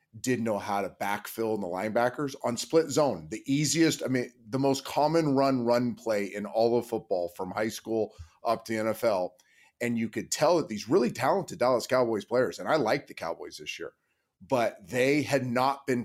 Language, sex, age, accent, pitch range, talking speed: English, male, 30-49, American, 110-130 Hz, 205 wpm